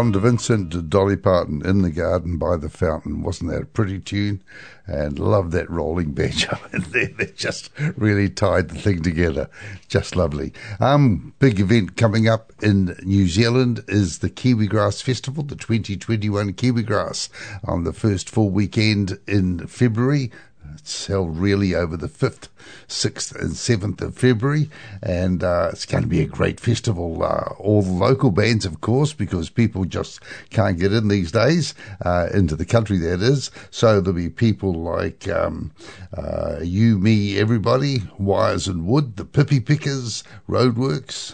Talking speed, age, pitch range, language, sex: 165 wpm, 60-79, 90-120 Hz, English, male